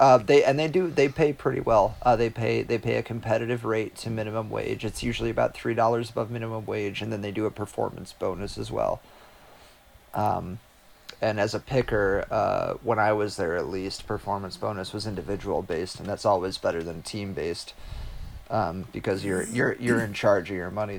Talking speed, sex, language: 200 wpm, male, English